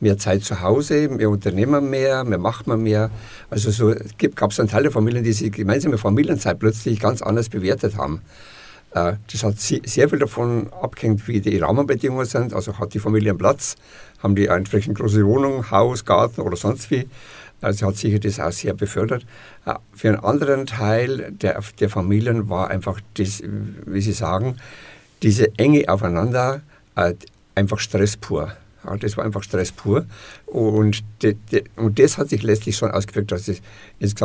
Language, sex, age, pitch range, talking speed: German, male, 60-79, 100-115 Hz, 175 wpm